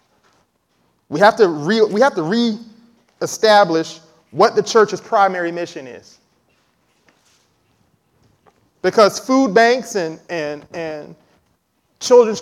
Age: 30-49